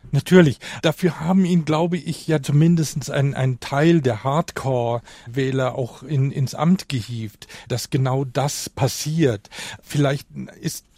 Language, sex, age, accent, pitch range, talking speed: German, male, 40-59, German, 125-145 Hz, 125 wpm